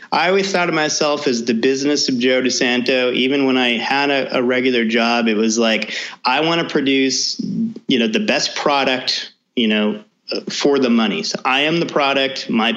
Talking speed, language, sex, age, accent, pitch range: 195 wpm, English, male, 30-49, American, 125-175 Hz